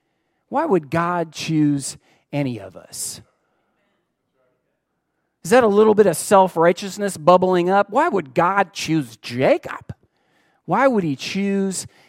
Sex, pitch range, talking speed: male, 155-240 Hz, 125 wpm